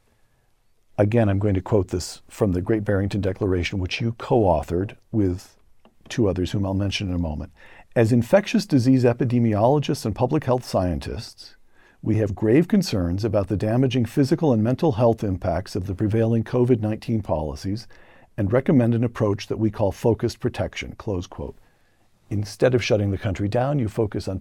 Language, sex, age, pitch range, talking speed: English, male, 50-69, 100-120 Hz, 165 wpm